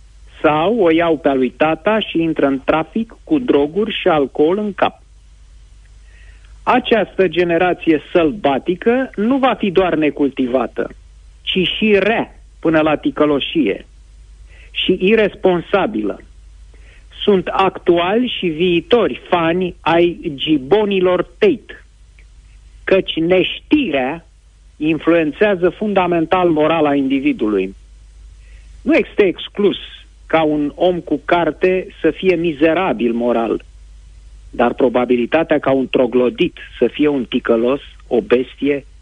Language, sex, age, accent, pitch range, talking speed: Romanian, male, 50-69, native, 115-175 Hz, 105 wpm